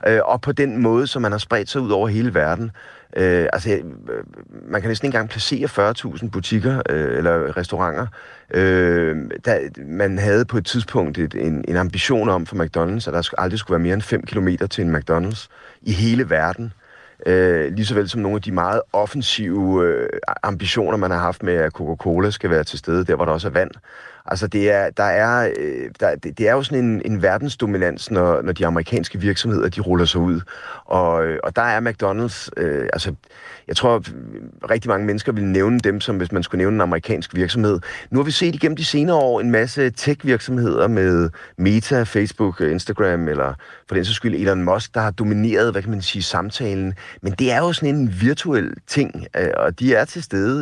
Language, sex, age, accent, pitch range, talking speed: Danish, male, 30-49, native, 90-120 Hz, 200 wpm